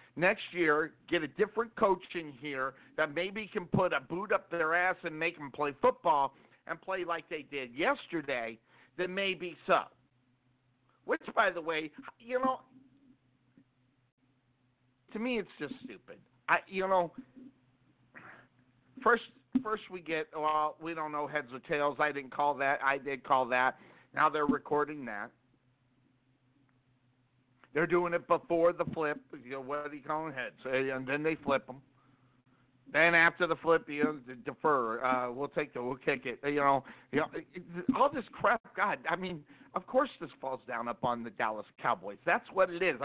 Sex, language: male, English